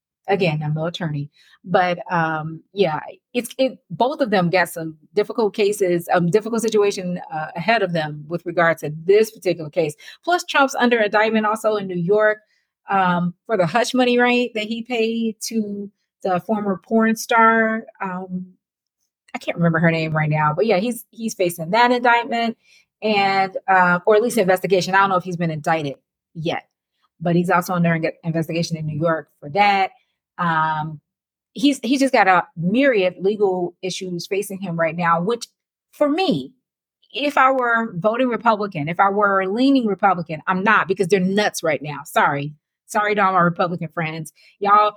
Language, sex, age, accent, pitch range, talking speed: English, female, 30-49, American, 170-220 Hz, 175 wpm